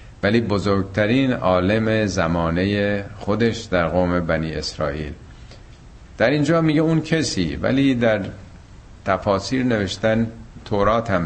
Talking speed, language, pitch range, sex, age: 105 wpm, Persian, 90-115 Hz, male, 50-69